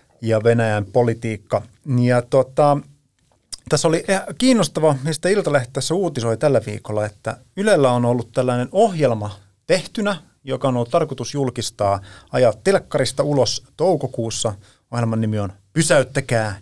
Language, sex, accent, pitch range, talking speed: Finnish, male, native, 110-145 Hz, 125 wpm